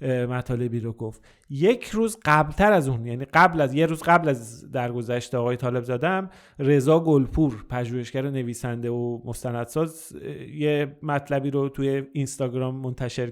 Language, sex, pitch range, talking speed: Persian, male, 130-160 Hz, 135 wpm